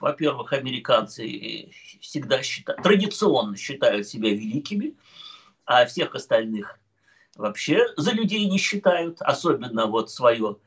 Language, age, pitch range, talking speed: Russian, 50-69, 140-195 Hz, 105 wpm